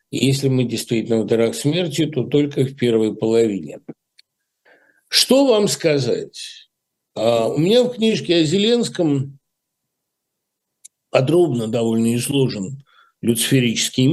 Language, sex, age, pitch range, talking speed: Russian, male, 60-79, 130-195 Hz, 100 wpm